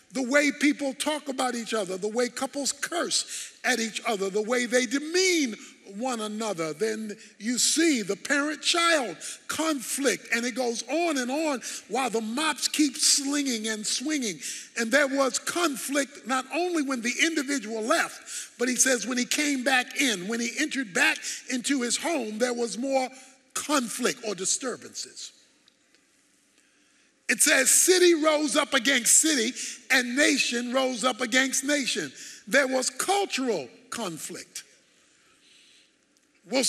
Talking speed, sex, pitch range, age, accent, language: 145 wpm, male, 235-295 Hz, 50-69, American, English